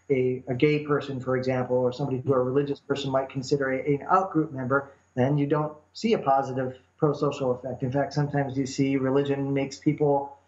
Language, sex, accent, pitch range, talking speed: English, male, American, 130-155 Hz, 190 wpm